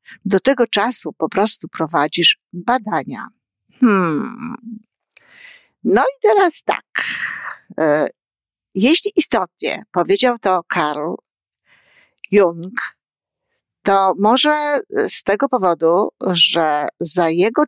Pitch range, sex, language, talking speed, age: 170-220 Hz, female, Polish, 85 wpm, 50-69